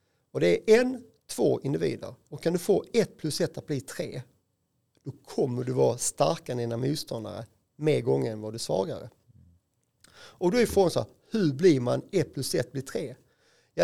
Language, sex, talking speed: Swedish, male, 200 wpm